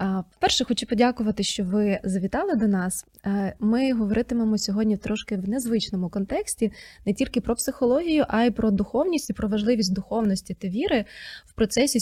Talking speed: 155 wpm